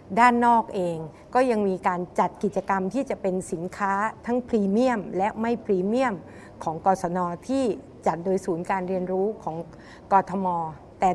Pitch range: 185-235 Hz